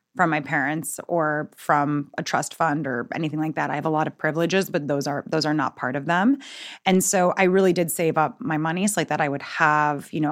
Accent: American